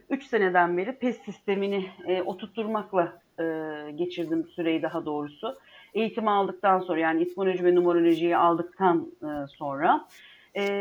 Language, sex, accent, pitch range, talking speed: Turkish, female, native, 175-270 Hz, 130 wpm